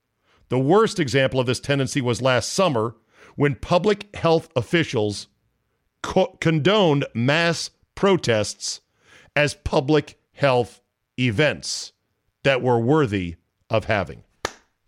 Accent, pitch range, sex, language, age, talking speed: American, 110-145 Hz, male, English, 50-69, 100 wpm